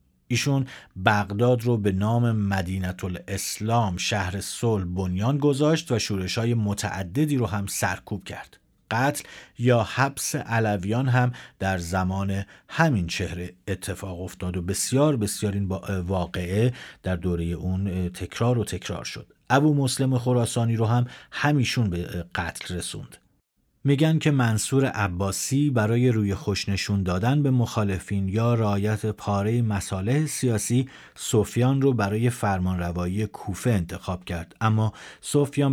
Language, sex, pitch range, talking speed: Persian, male, 95-125 Hz, 125 wpm